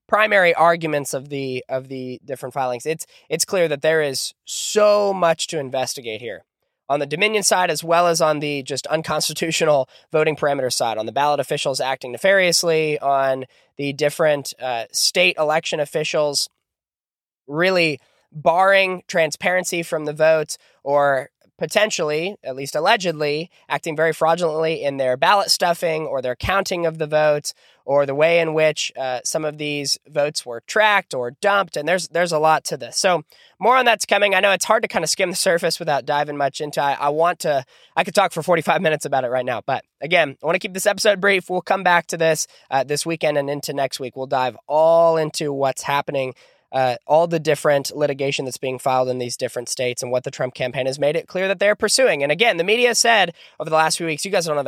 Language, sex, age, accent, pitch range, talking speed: English, male, 20-39, American, 140-180 Hz, 205 wpm